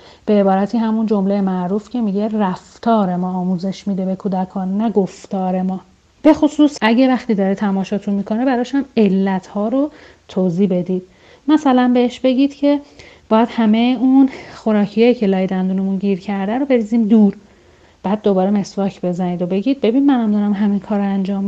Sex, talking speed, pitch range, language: female, 160 wpm, 190-245 Hz, Persian